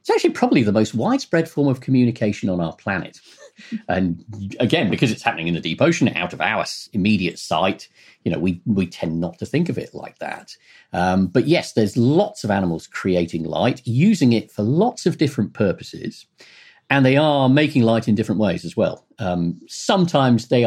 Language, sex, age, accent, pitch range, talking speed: English, male, 40-59, British, 95-135 Hz, 195 wpm